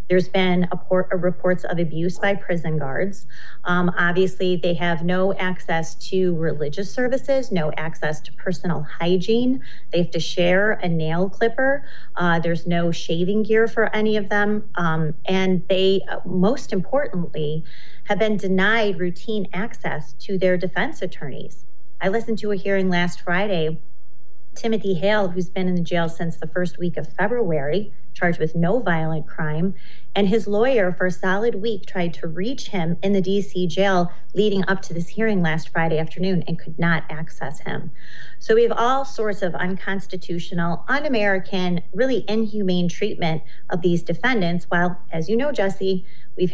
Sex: female